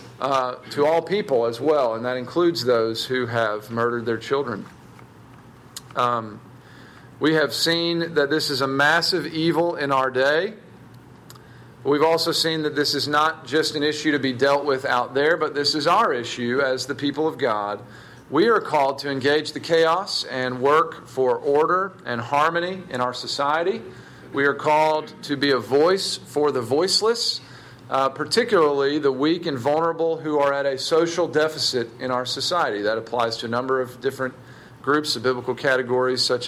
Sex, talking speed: male, 175 wpm